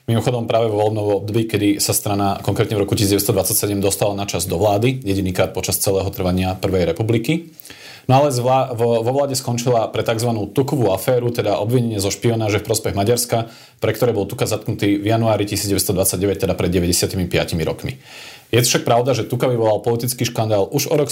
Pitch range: 100-125 Hz